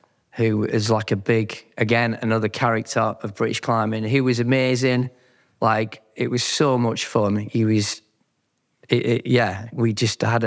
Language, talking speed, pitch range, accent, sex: English, 160 wpm, 105-120 Hz, British, male